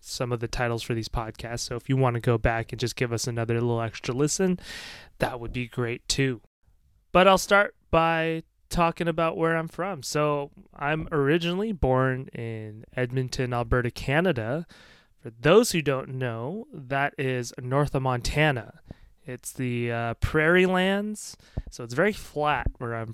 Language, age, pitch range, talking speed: English, 20-39, 115-150 Hz, 170 wpm